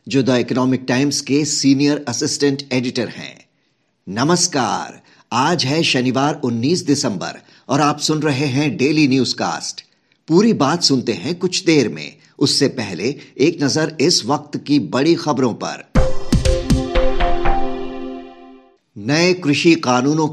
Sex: male